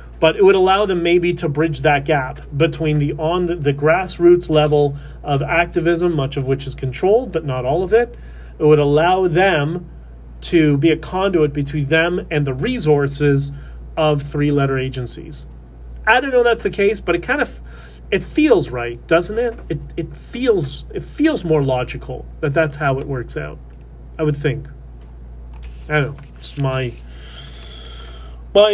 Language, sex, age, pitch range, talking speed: English, male, 30-49, 135-170 Hz, 175 wpm